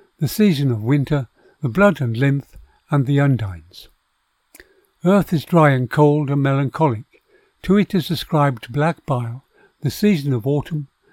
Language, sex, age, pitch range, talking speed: English, male, 60-79, 130-175 Hz, 150 wpm